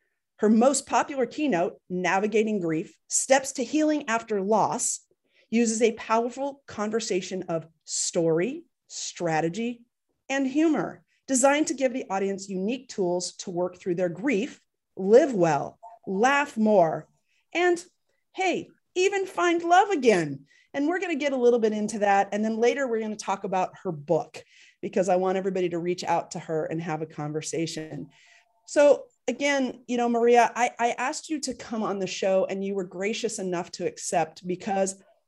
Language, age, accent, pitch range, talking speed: English, 40-59, American, 185-260 Hz, 165 wpm